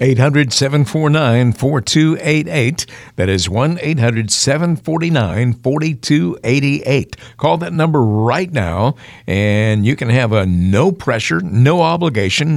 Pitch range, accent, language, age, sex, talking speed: 105-135 Hz, American, English, 50-69, male, 75 wpm